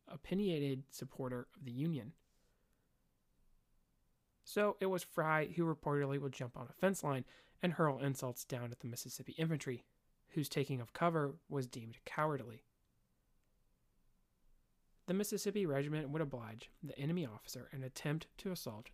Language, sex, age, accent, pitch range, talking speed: English, male, 30-49, American, 120-155 Hz, 140 wpm